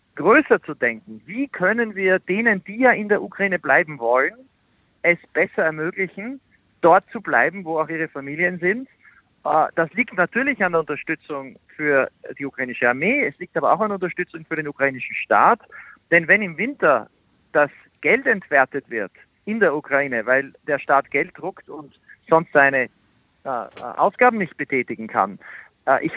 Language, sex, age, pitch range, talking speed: German, male, 50-69, 145-200 Hz, 160 wpm